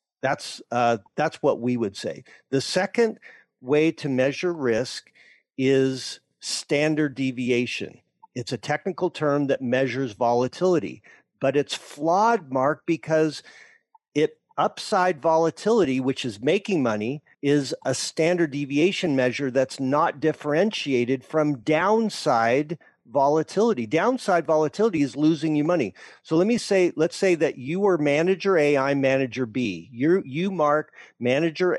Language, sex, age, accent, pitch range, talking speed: English, male, 50-69, American, 130-165 Hz, 130 wpm